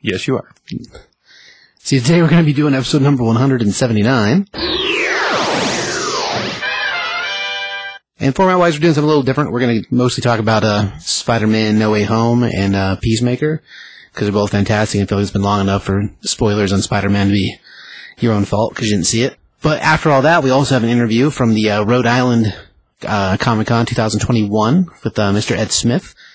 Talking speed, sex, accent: 185 wpm, male, American